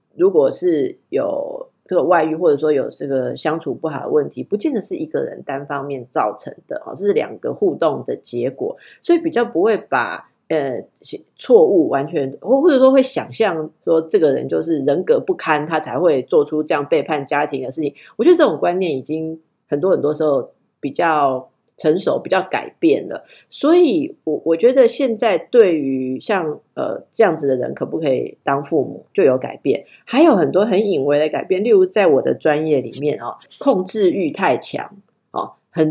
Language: Chinese